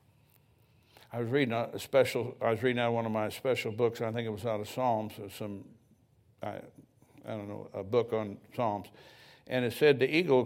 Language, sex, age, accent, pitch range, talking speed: English, male, 60-79, American, 115-145 Hz, 210 wpm